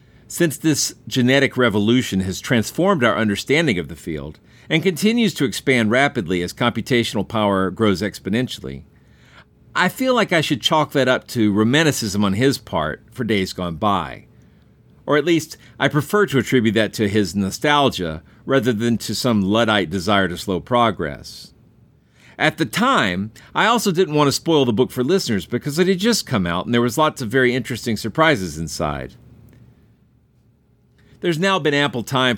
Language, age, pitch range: English, 50-69, 100-145 Hz